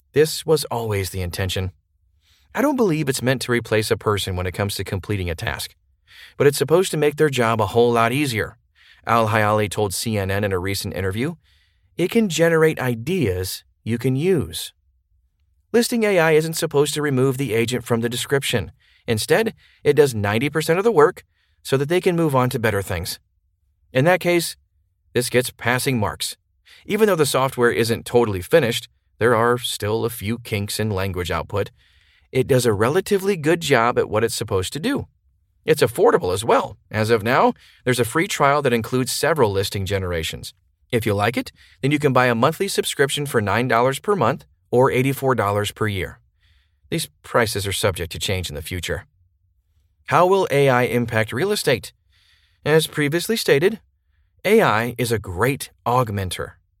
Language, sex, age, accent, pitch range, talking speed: English, male, 30-49, American, 95-140 Hz, 175 wpm